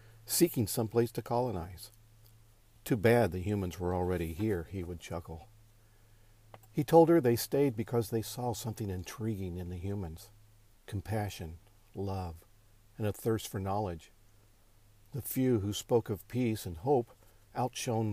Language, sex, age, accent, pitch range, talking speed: English, male, 50-69, American, 95-115 Hz, 145 wpm